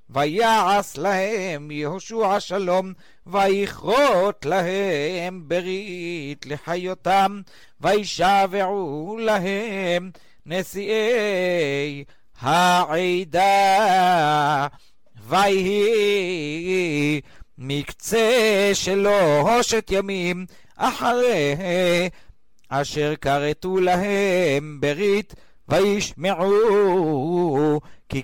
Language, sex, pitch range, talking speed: Hebrew, male, 150-200 Hz, 50 wpm